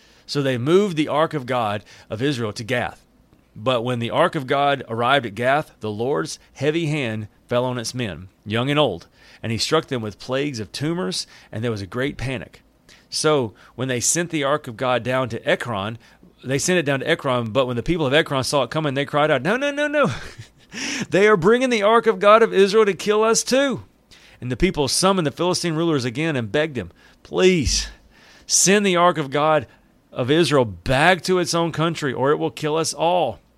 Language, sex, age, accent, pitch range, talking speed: English, male, 40-59, American, 120-160 Hz, 215 wpm